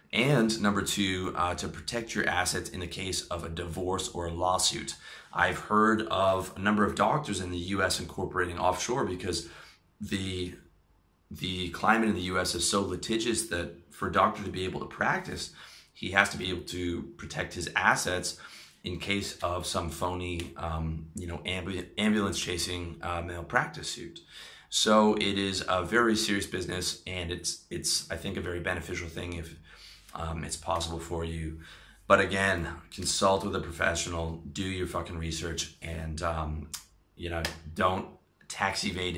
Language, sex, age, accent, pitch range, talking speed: English, male, 30-49, American, 85-95 Hz, 170 wpm